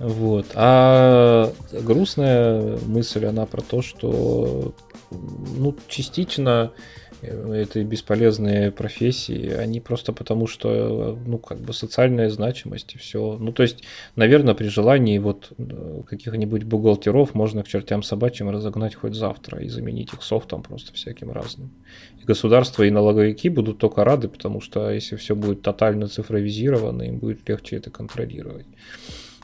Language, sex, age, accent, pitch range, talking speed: Russian, male, 20-39, native, 105-120 Hz, 125 wpm